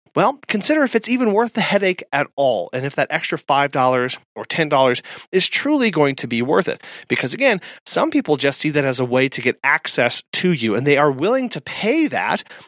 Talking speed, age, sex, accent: 220 wpm, 30-49, male, American